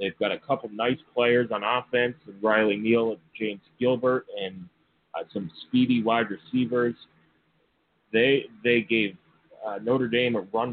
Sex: male